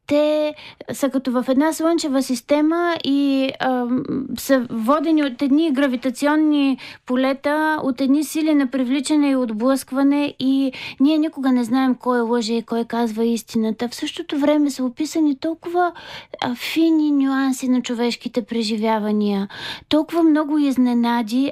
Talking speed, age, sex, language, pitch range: 130 wpm, 30-49, female, Bulgarian, 235-275 Hz